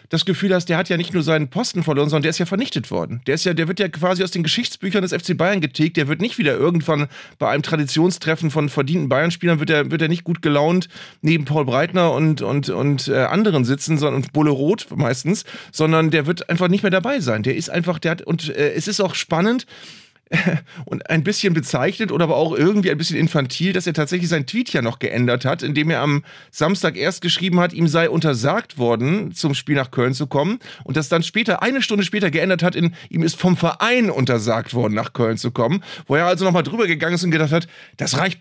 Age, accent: 30-49, German